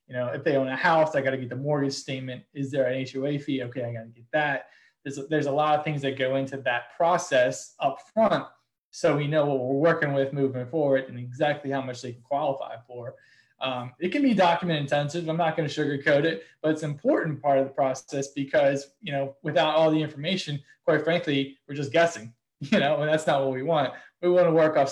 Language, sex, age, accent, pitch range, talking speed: English, male, 20-39, American, 130-155 Hz, 240 wpm